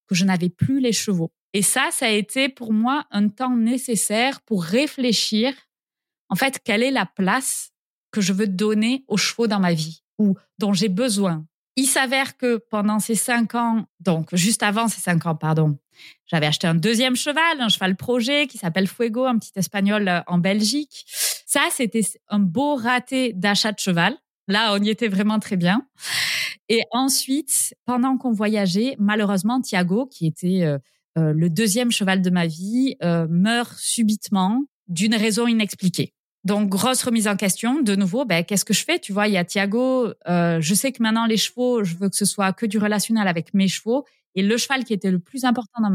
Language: French